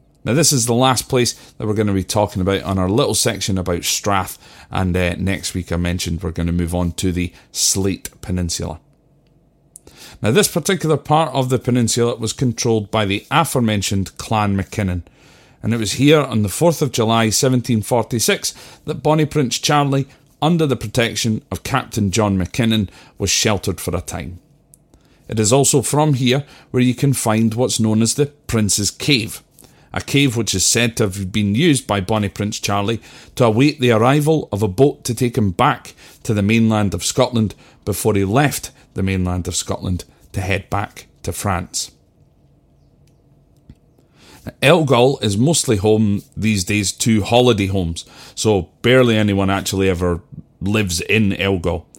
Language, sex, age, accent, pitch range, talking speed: English, male, 40-59, British, 95-130 Hz, 170 wpm